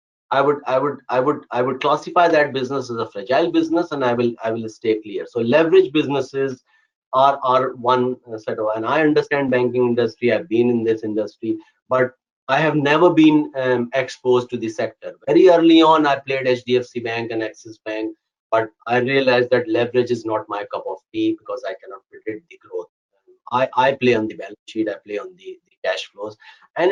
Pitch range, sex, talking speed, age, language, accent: 120-170 Hz, male, 205 wpm, 30-49, Tamil, native